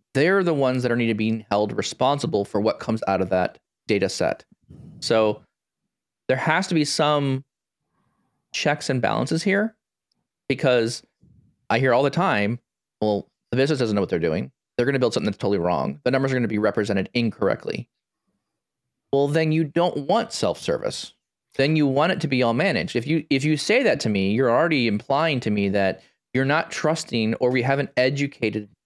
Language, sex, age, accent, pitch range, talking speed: English, male, 20-39, American, 110-145 Hz, 195 wpm